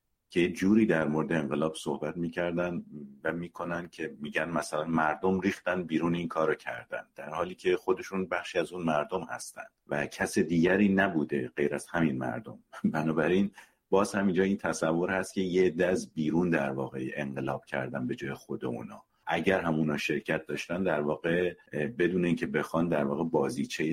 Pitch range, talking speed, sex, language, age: 75-95 Hz, 165 wpm, male, Persian, 50-69